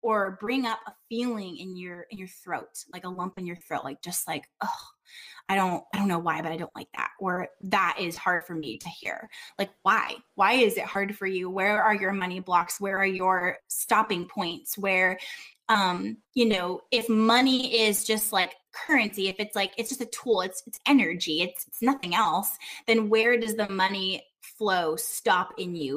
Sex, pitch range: female, 180-225 Hz